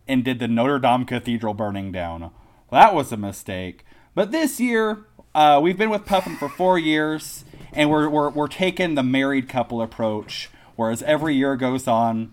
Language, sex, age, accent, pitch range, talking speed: English, male, 30-49, American, 110-155 Hz, 185 wpm